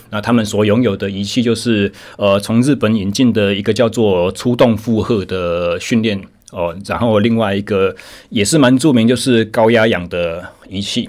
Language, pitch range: Chinese, 100-120 Hz